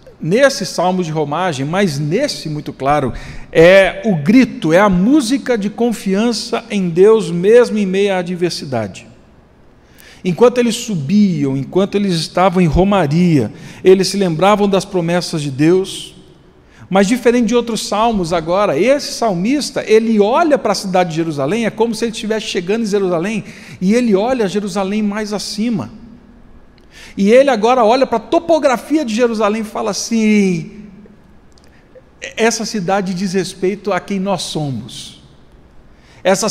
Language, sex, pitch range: Portuguese, male, 170-220 Hz